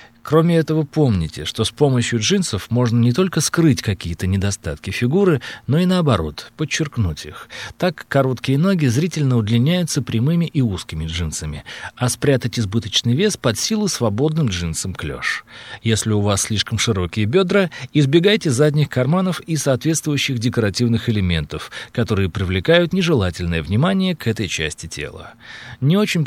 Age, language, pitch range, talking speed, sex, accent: 40-59, Russian, 105-155 Hz, 140 wpm, male, native